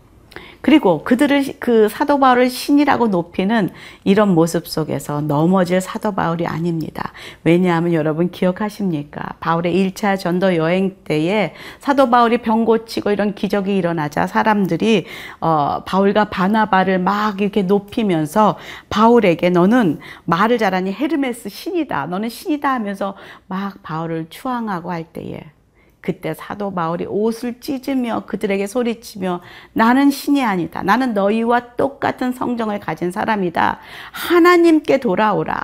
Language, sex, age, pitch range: Korean, female, 40-59, 170-225 Hz